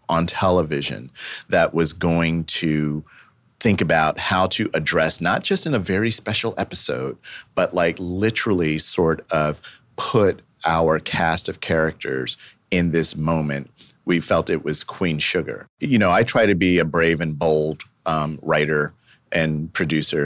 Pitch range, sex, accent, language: 80-110 Hz, male, American, English